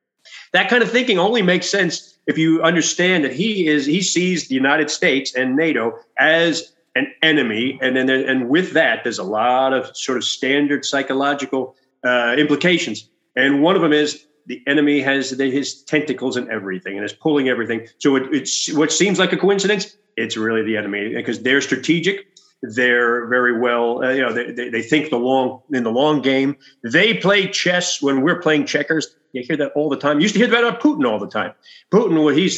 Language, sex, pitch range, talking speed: English, male, 130-180 Hz, 205 wpm